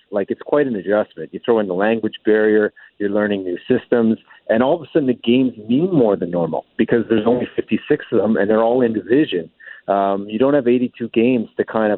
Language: English